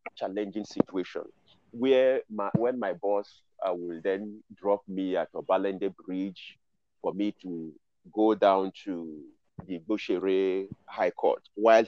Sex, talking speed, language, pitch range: male, 130 wpm, English, 95-125 Hz